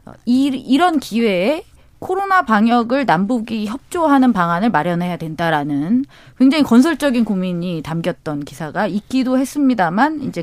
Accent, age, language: native, 30-49, Korean